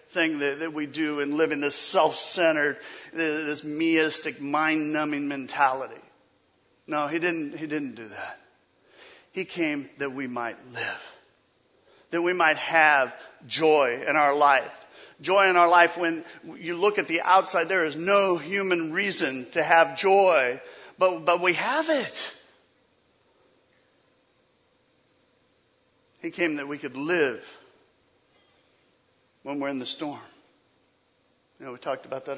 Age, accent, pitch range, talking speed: 40-59, American, 155-205 Hz, 140 wpm